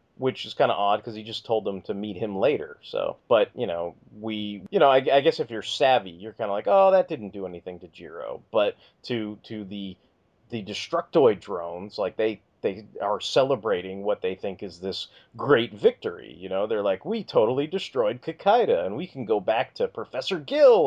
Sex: male